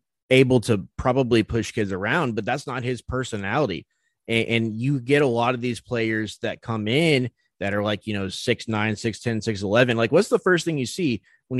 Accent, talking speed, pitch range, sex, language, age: American, 215 wpm, 105-125 Hz, male, English, 30-49